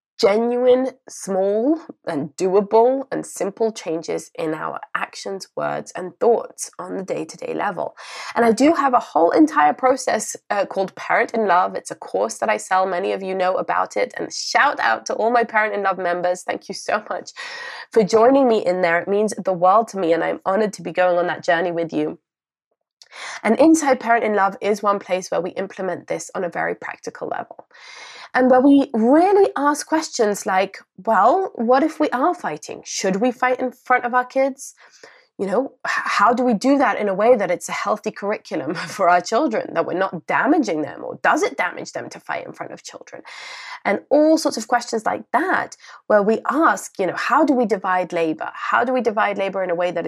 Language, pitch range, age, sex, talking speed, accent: English, 185-255 Hz, 20-39, female, 210 wpm, British